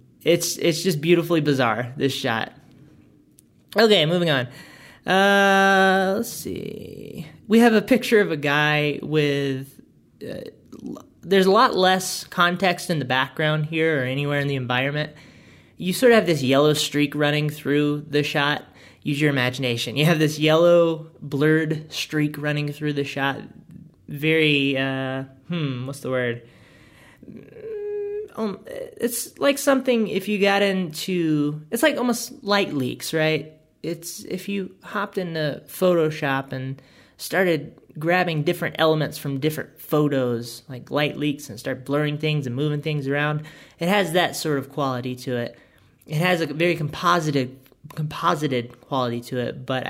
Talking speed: 150 wpm